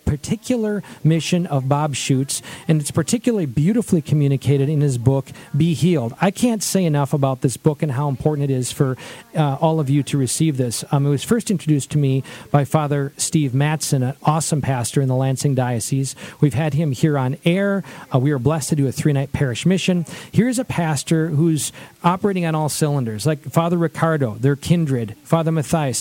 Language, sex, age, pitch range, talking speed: English, male, 40-59, 140-175 Hz, 195 wpm